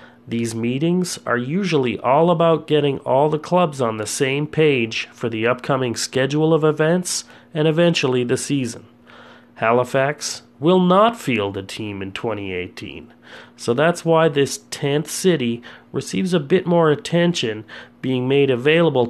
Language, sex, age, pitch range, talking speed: English, male, 30-49, 120-150 Hz, 145 wpm